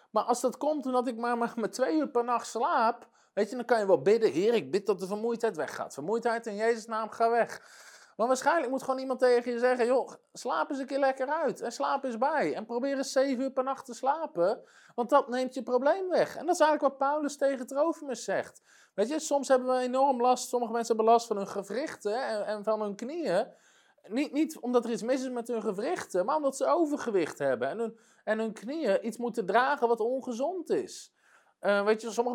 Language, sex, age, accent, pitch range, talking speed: Dutch, male, 20-39, Dutch, 215-270 Hz, 230 wpm